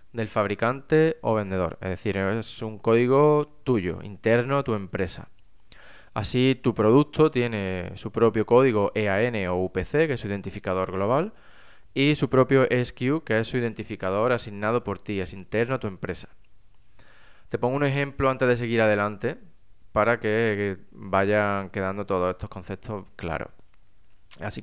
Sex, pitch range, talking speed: male, 100-125 Hz, 150 wpm